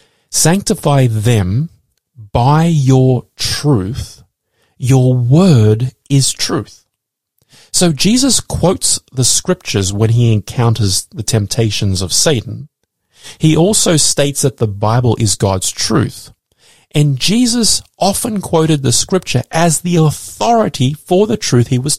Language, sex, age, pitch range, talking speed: English, male, 30-49, 115-160 Hz, 120 wpm